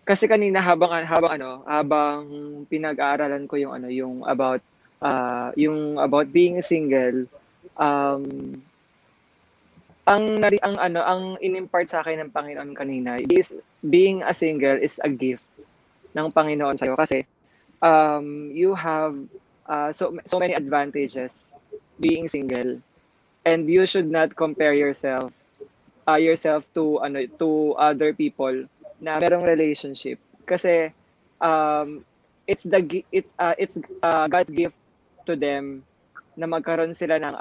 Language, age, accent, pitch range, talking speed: English, 20-39, Filipino, 140-175 Hz, 135 wpm